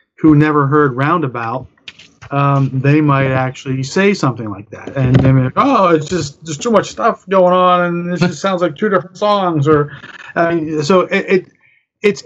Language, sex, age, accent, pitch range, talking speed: English, male, 30-49, American, 125-155 Hz, 185 wpm